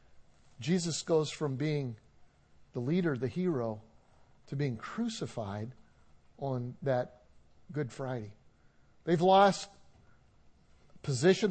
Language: English